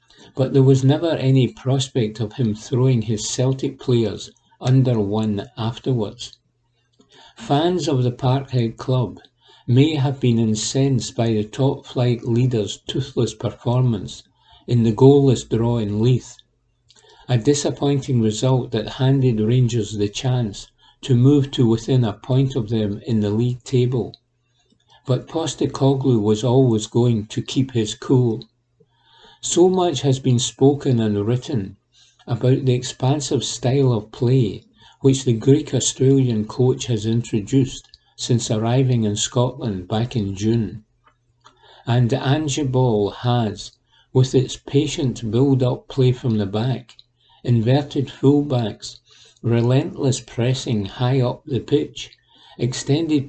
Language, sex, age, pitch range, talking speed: English, male, 60-79, 115-135 Hz, 130 wpm